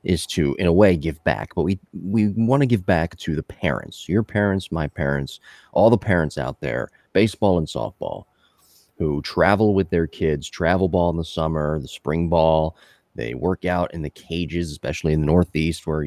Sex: male